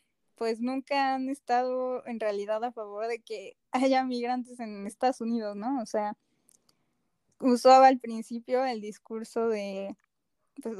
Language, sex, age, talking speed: Spanish, female, 10-29, 140 wpm